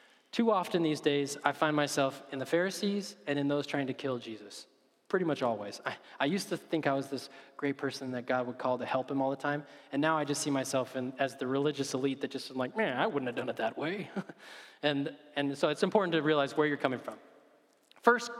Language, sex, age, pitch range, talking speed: English, male, 20-39, 130-160 Hz, 240 wpm